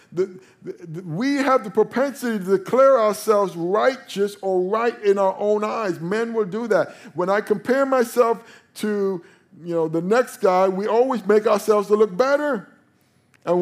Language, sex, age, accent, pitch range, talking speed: English, male, 50-69, American, 165-225 Hz, 160 wpm